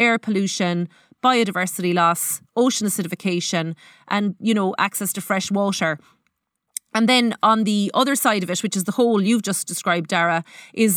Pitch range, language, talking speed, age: 185-245 Hz, English, 165 wpm, 30-49